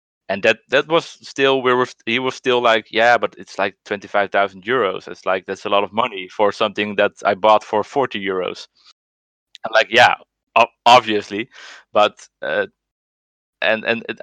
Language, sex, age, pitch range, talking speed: English, male, 20-39, 100-115 Hz, 170 wpm